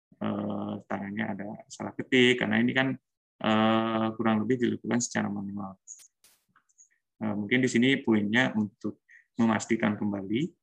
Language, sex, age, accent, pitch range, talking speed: Indonesian, male, 20-39, native, 105-115 Hz, 105 wpm